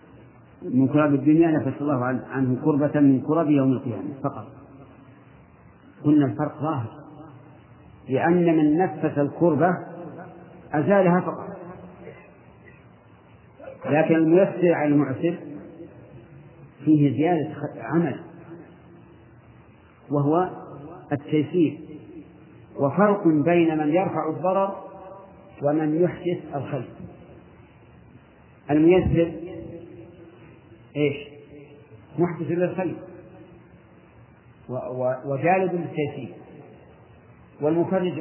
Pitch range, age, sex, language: 135-165 Hz, 50-69, male, Arabic